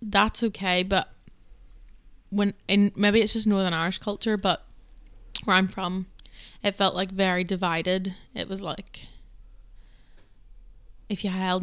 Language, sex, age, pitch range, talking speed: English, female, 10-29, 165-200 Hz, 135 wpm